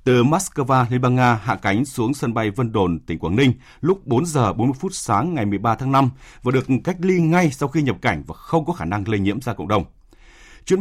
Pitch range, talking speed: 110-150 Hz, 250 wpm